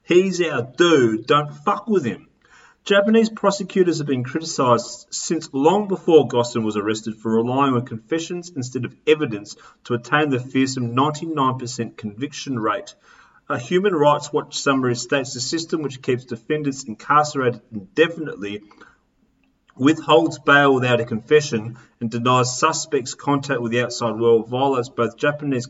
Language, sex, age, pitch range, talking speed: English, male, 30-49, 120-155 Hz, 140 wpm